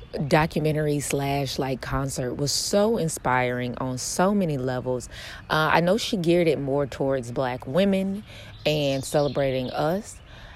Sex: female